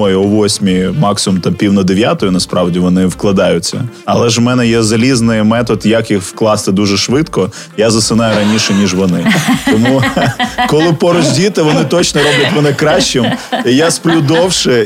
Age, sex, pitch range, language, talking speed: 20-39, male, 110-150 Hz, Ukrainian, 160 wpm